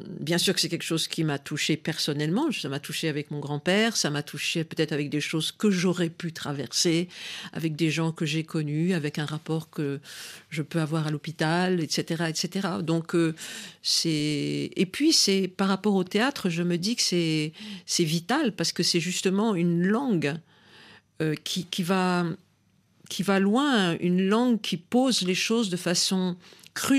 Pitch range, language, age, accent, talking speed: 160-195 Hz, French, 50-69, French, 185 wpm